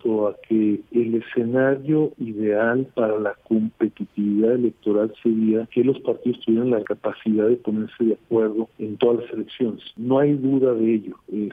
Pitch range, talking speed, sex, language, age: 110-135 Hz, 155 wpm, male, Spanish, 50-69